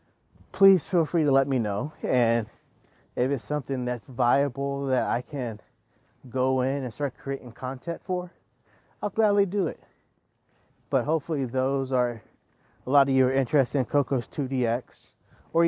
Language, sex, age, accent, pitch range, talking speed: English, male, 30-49, American, 120-140 Hz, 155 wpm